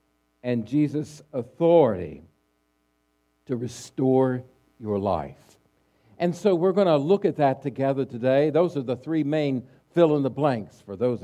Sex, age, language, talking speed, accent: male, 60-79, English, 135 wpm, American